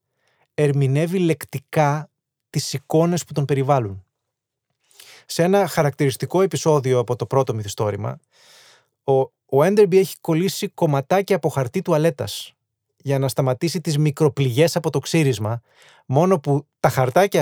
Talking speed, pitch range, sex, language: 125 wpm, 130-160 Hz, male, Greek